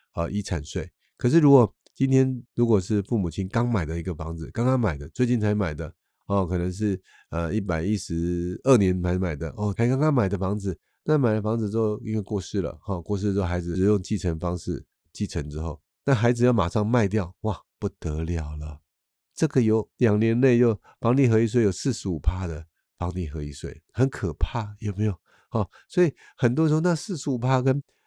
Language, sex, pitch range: Chinese, male, 85-120 Hz